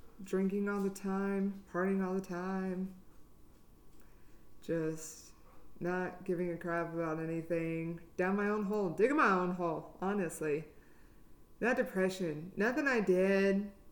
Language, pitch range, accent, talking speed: English, 160-200 Hz, American, 125 wpm